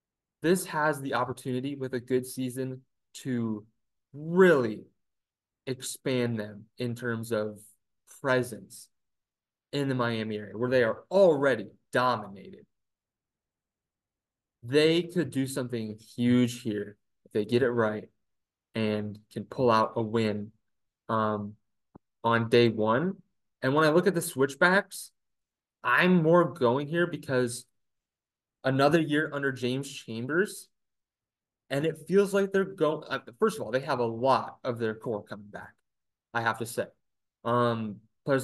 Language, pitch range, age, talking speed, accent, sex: English, 110-135 Hz, 20-39, 135 wpm, American, male